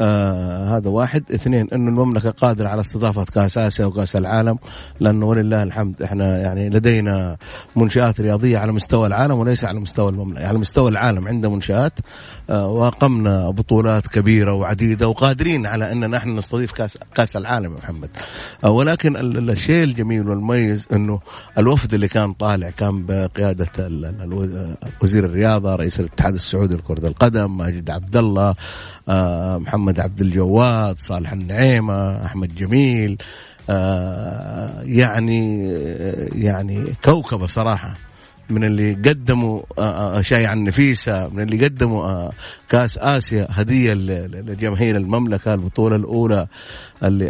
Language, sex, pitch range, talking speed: Arabic, male, 95-115 Hz, 130 wpm